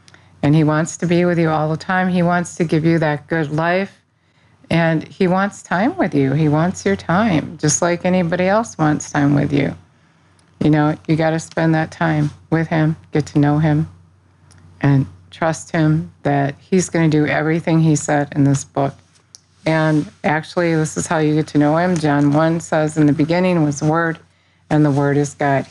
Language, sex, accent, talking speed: English, female, American, 205 wpm